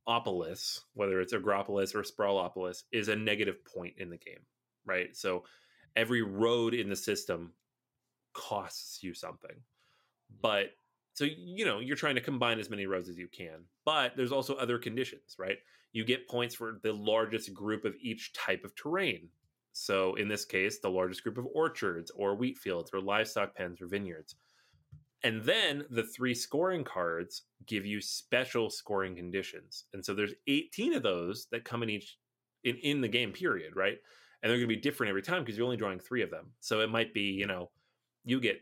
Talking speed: 190 wpm